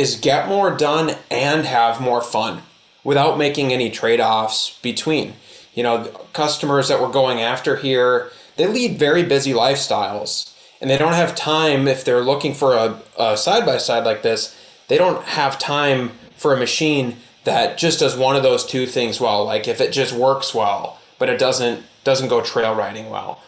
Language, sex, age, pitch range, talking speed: English, male, 20-39, 120-155 Hz, 180 wpm